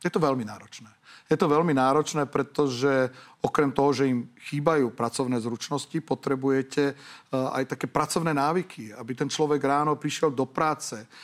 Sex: male